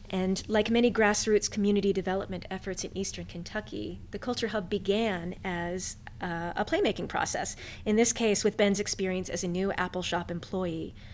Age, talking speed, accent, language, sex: 30-49, 165 wpm, American, English, female